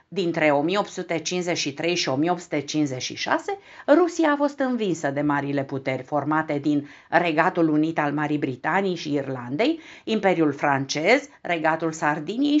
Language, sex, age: Romanian, female, 50-69